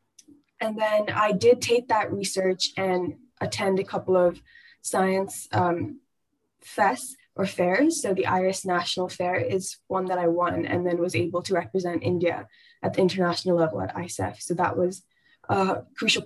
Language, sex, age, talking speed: English, female, 10-29, 165 wpm